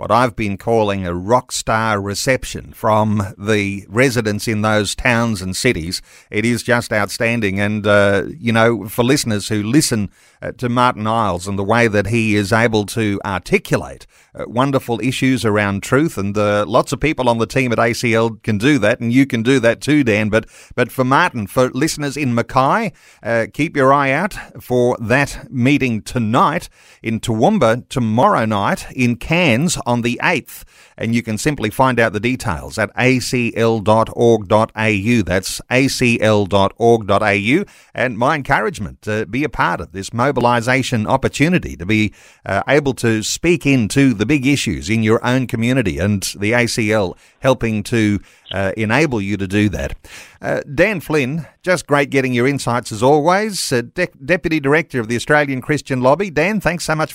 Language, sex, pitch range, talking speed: English, male, 105-135 Hz, 170 wpm